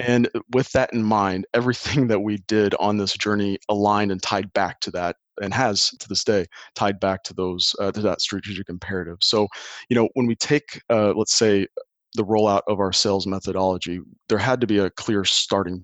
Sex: male